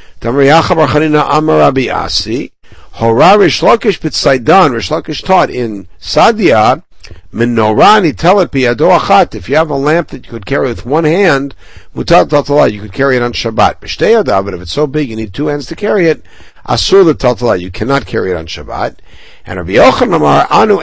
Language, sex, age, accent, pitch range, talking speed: English, male, 60-79, American, 115-165 Hz, 115 wpm